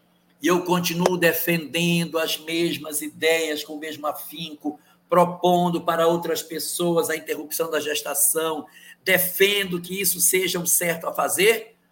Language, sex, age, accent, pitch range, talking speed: Portuguese, male, 60-79, Brazilian, 145-180 Hz, 135 wpm